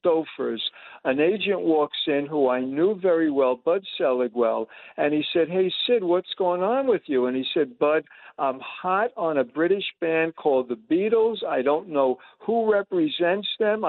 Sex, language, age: male, English, 60-79